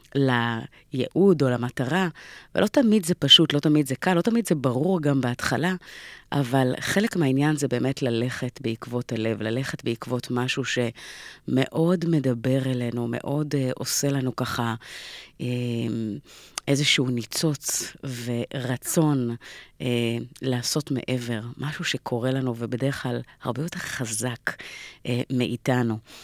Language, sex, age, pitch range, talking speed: Hebrew, female, 30-49, 120-145 Hz, 120 wpm